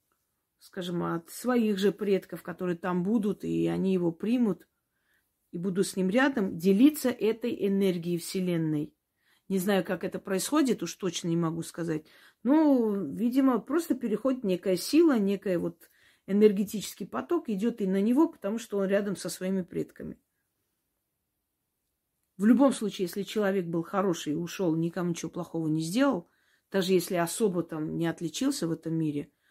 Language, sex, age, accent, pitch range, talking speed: Russian, female, 40-59, native, 175-230 Hz, 155 wpm